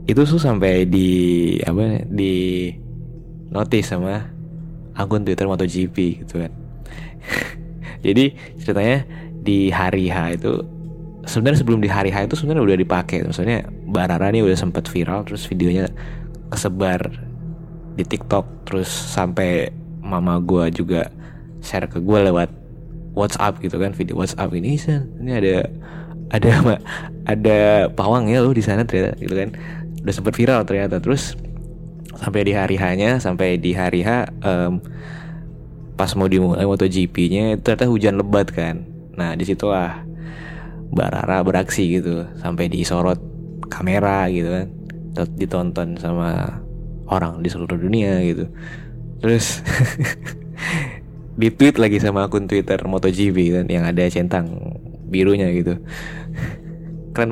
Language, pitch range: Indonesian, 90-155 Hz